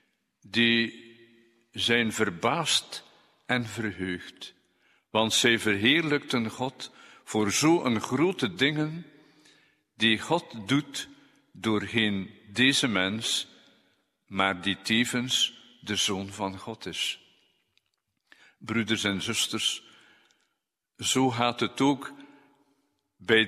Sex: male